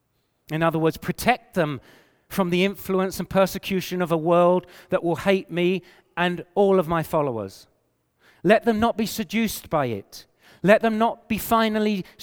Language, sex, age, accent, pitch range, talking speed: English, male, 40-59, British, 160-200 Hz, 165 wpm